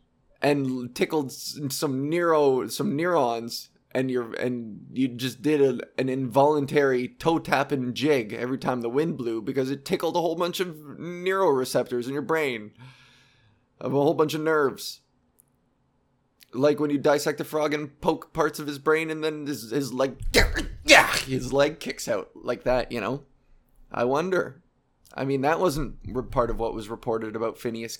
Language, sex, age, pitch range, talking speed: English, male, 20-39, 125-155 Hz, 165 wpm